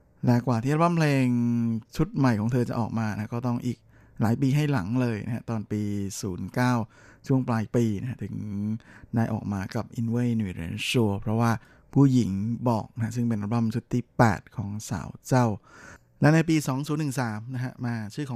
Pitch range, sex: 110-125 Hz, male